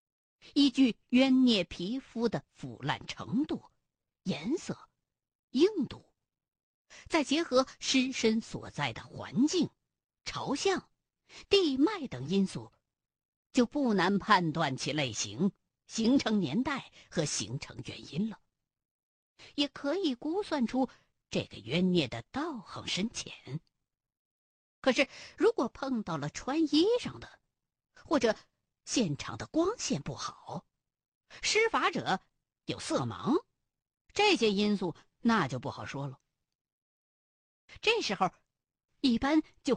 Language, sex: Chinese, female